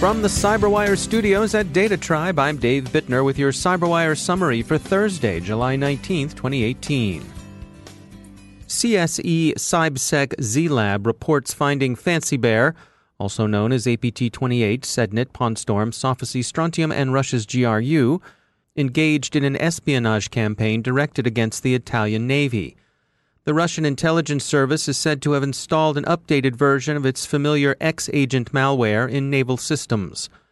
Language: English